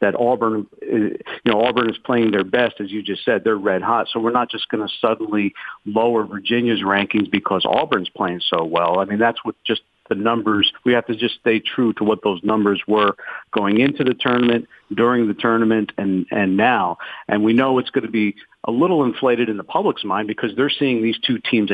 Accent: American